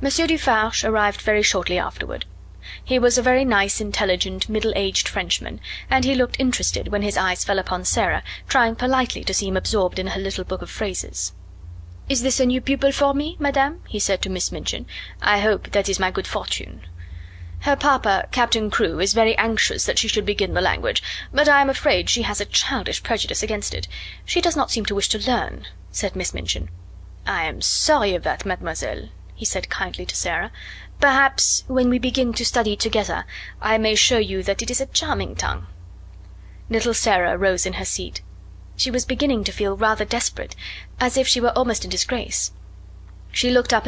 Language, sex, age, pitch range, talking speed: English, female, 30-49, 185-250 Hz, 195 wpm